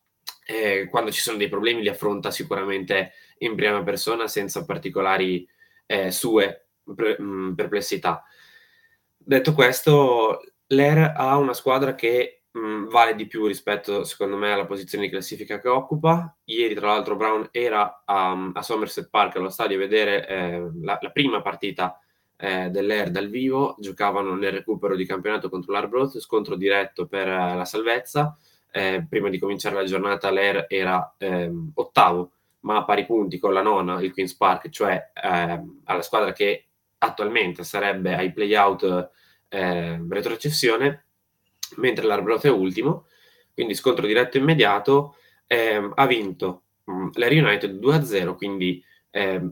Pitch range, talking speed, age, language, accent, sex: 95-125 Hz, 150 wpm, 20-39, Italian, native, male